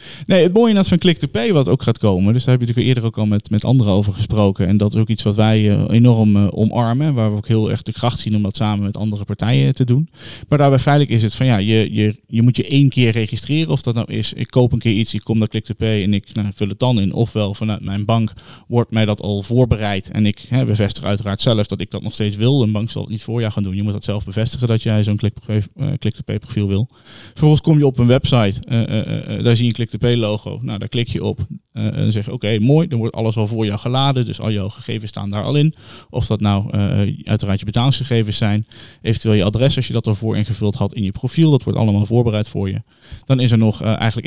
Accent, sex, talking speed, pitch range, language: Dutch, male, 275 wpm, 105-125 Hz, Dutch